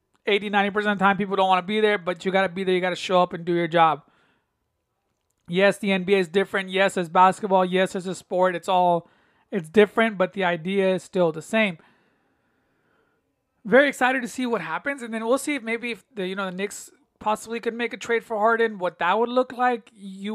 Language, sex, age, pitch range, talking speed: English, male, 30-49, 190-230 Hz, 230 wpm